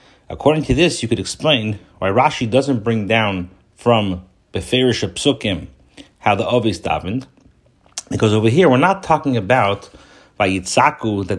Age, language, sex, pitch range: 40-59, English, male, 95-130 Hz